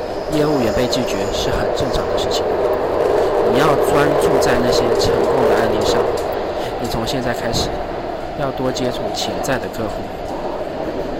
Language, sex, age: Chinese, male, 20-39